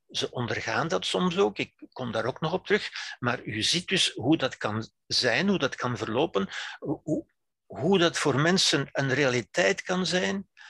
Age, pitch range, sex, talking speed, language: 60-79, 120-175 Hz, male, 185 wpm, Dutch